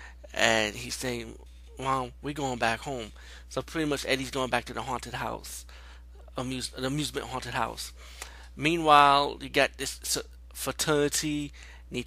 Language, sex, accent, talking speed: English, male, American, 145 wpm